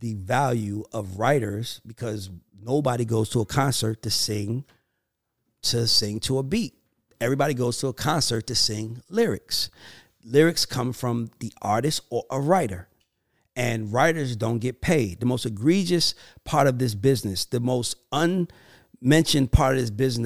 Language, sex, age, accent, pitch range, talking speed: English, male, 40-59, American, 110-145 Hz, 155 wpm